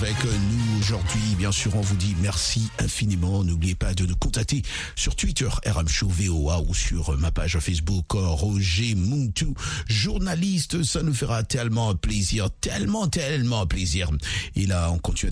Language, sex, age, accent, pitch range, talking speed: French, male, 50-69, French, 85-110 Hz, 155 wpm